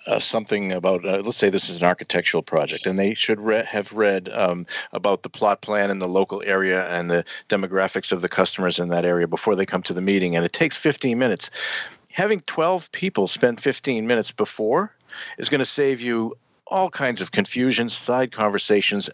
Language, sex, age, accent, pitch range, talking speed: English, male, 50-69, American, 90-130 Hz, 200 wpm